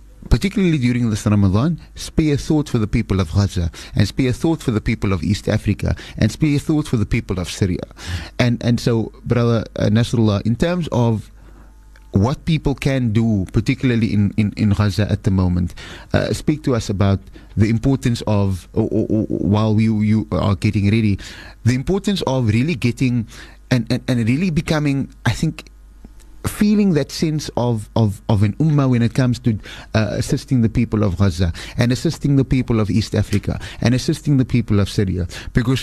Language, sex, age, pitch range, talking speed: English, male, 30-49, 105-130 Hz, 185 wpm